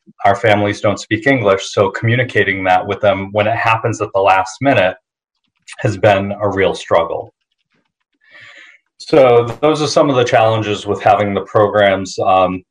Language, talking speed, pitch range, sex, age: English, 160 wpm, 95-115 Hz, male, 30-49